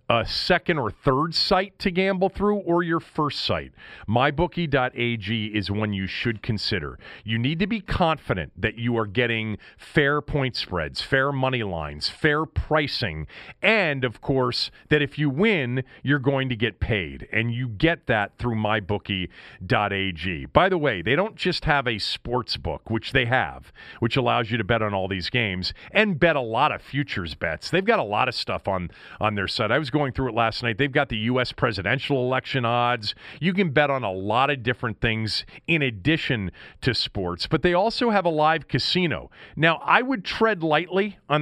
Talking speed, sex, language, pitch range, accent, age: 195 wpm, male, English, 120-175 Hz, American, 40-59